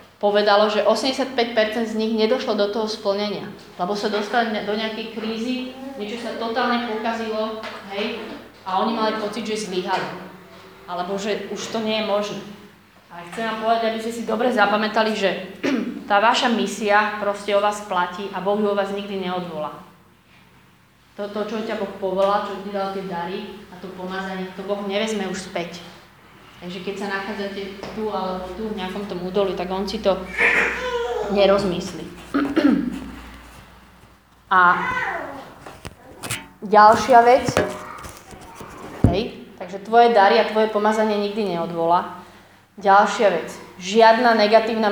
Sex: female